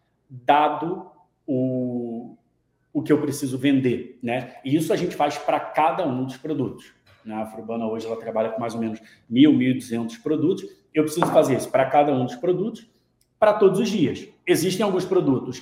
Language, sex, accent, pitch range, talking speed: Portuguese, male, Brazilian, 125-150 Hz, 175 wpm